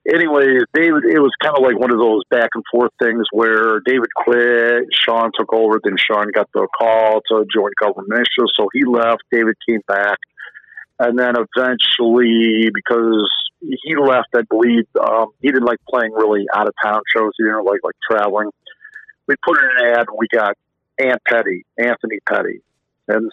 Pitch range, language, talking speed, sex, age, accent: 110-125 Hz, English, 190 wpm, male, 50-69, American